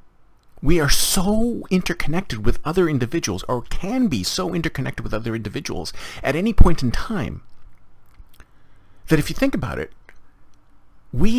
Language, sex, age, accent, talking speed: English, male, 40-59, American, 140 wpm